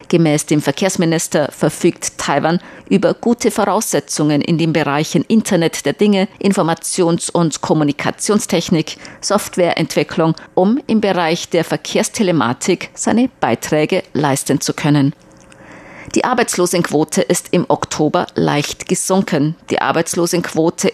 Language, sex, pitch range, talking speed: German, female, 150-185 Hz, 105 wpm